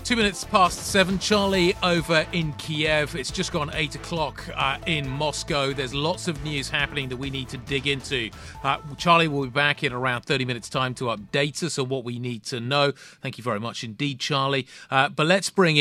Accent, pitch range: British, 130-160 Hz